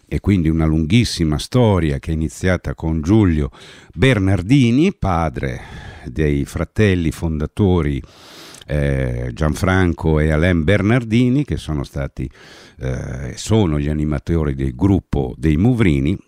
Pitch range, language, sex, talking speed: 75-100 Hz, Italian, male, 115 wpm